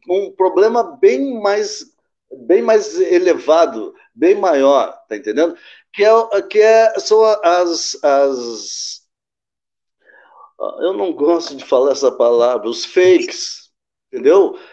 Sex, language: male, Portuguese